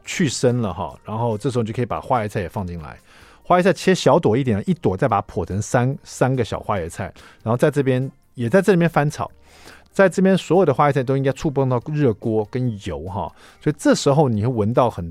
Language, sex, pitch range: Chinese, male, 105-155 Hz